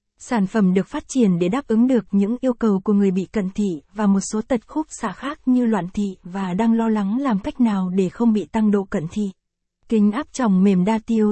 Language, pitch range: Vietnamese, 200-240 Hz